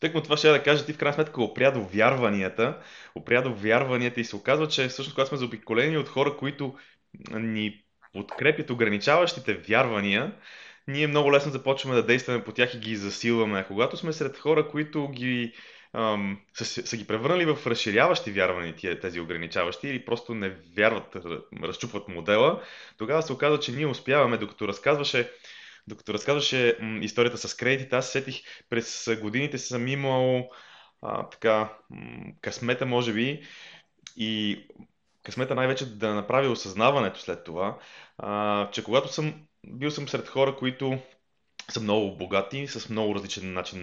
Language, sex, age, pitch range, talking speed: Bulgarian, male, 20-39, 110-135 Hz, 155 wpm